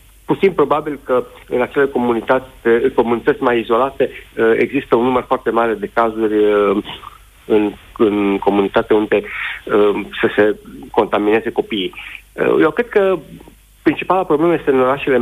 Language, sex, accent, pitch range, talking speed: Romanian, male, native, 115-150 Hz, 120 wpm